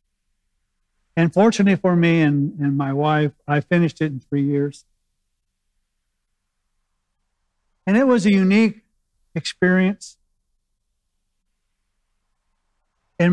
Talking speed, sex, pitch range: 95 wpm, male, 140-175 Hz